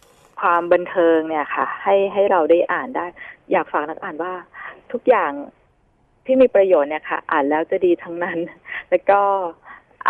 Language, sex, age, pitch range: Thai, female, 20-39, 165-200 Hz